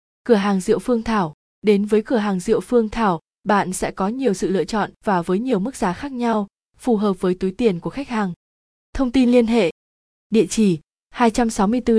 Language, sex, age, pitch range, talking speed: Vietnamese, female, 20-39, 190-230 Hz, 205 wpm